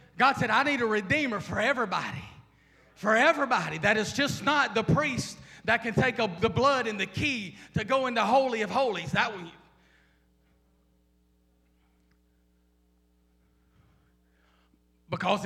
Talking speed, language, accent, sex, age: 140 wpm, English, American, male, 30-49